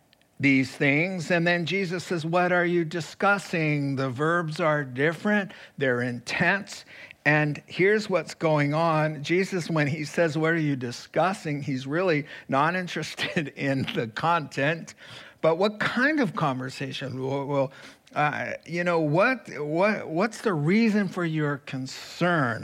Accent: American